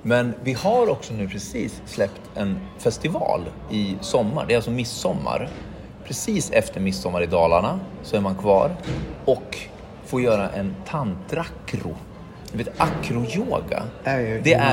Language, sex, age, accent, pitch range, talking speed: Swedish, male, 30-49, native, 105-160 Hz, 130 wpm